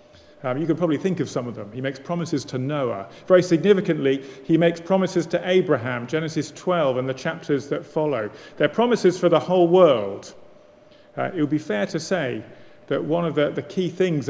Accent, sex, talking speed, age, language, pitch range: British, male, 200 wpm, 40-59, English, 140-180 Hz